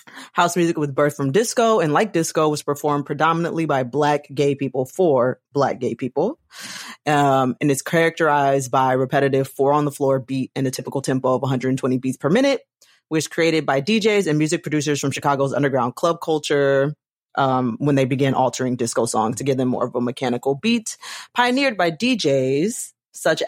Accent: American